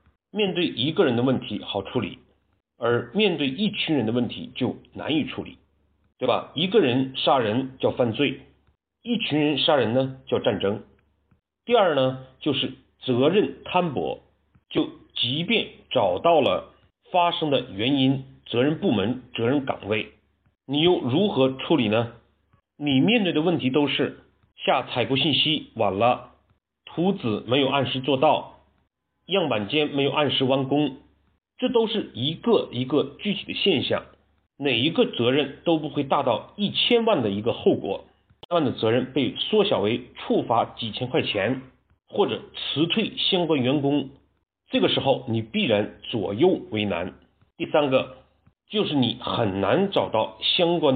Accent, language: native, Chinese